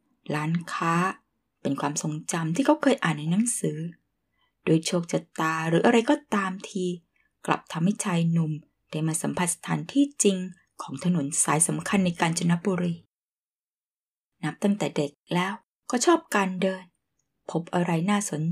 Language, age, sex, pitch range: Thai, 10-29, female, 165-215 Hz